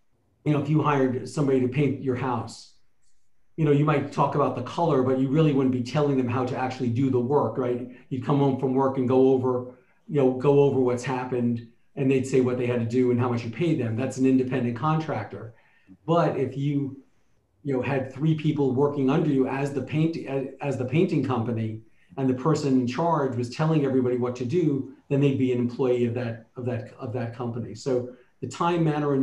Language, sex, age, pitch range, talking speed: English, male, 40-59, 125-140 Hz, 225 wpm